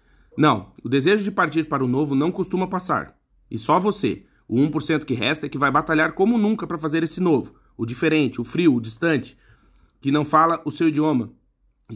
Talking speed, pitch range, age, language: 205 wpm, 130-160 Hz, 30-49, Portuguese